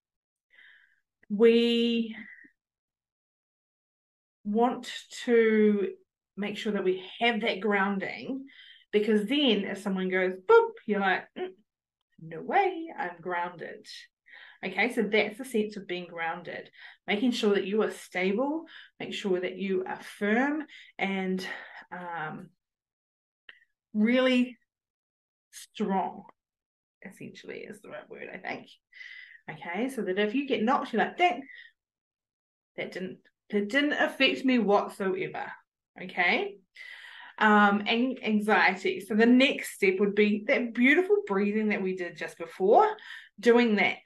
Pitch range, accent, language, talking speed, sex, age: 195-270 Hz, Australian, English, 125 wpm, female, 20-39